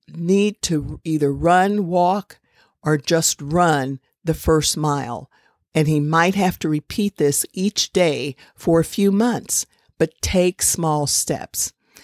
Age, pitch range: 50-69, 155-195 Hz